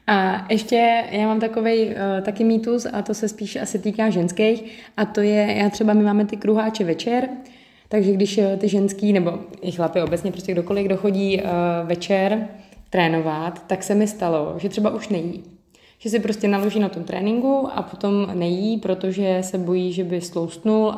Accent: native